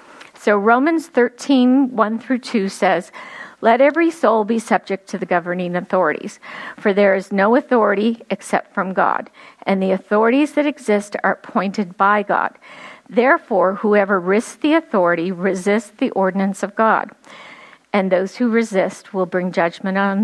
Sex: female